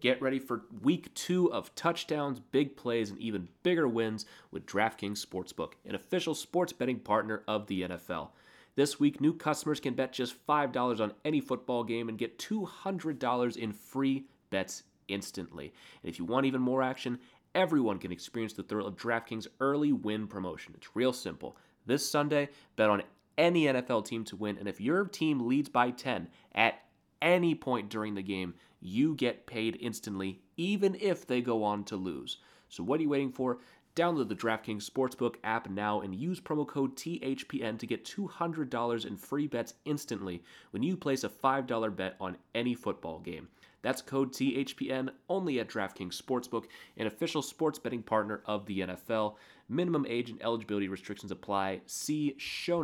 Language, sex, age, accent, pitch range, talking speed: English, male, 30-49, American, 105-145 Hz, 175 wpm